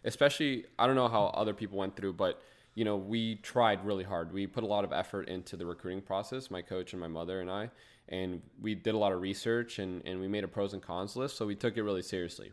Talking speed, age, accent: 265 wpm, 20-39, American